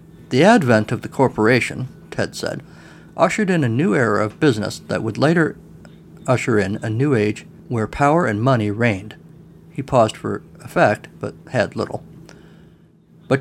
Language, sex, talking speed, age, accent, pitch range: English, male, 155 wpm, 50-69, American, 110-170 Hz